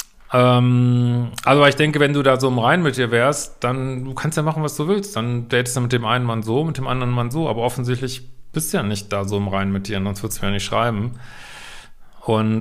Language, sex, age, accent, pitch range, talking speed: German, male, 40-59, German, 125-145 Hz, 255 wpm